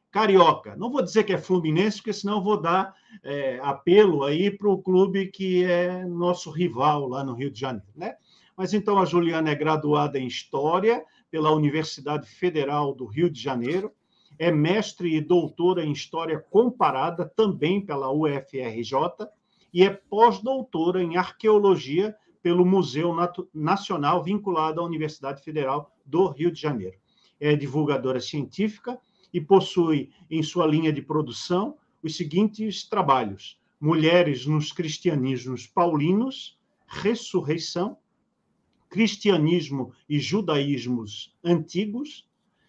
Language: Portuguese